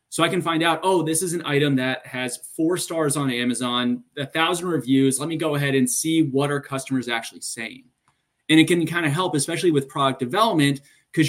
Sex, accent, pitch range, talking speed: male, American, 130-160 Hz, 220 wpm